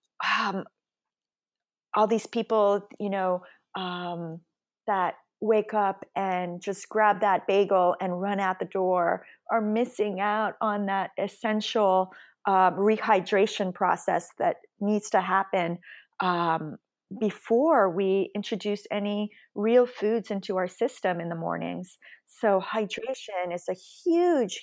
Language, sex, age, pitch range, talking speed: English, female, 40-59, 180-215 Hz, 125 wpm